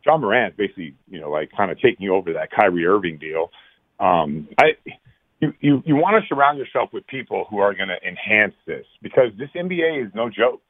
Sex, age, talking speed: male, 50-69, 210 wpm